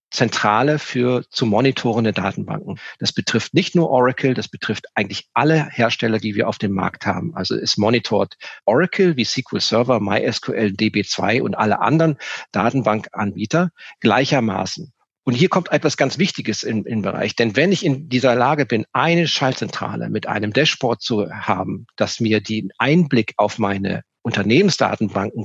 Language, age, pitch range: German, 40-59, 110-145 Hz